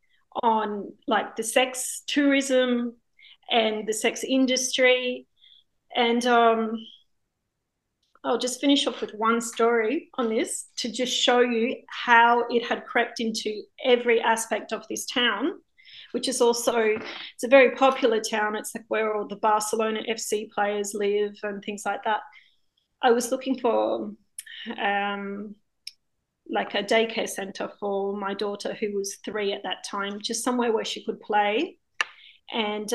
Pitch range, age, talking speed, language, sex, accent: 210-255 Hz, 30-49, 145 wpm, English, female, Australian